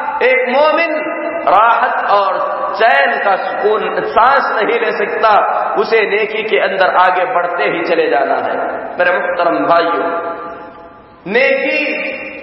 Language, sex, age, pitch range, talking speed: Hindi, male, 40-59, 205-290 Hz, 115 wpm